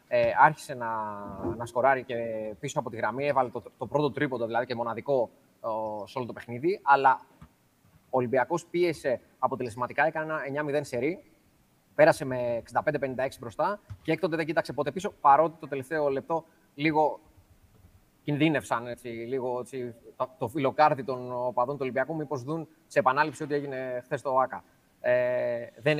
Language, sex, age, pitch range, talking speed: Greek, male, 20-39, 125-155 Hz, 155 wpm